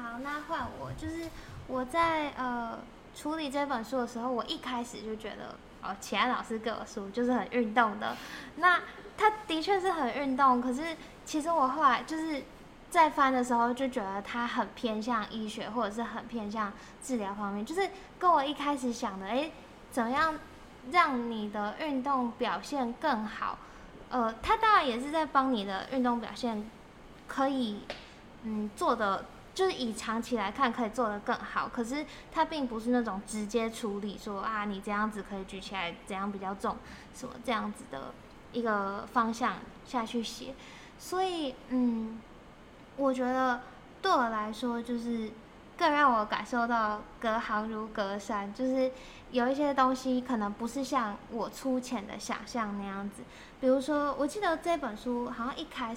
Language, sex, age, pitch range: Chinese, female, 10-29, 220-275 Hz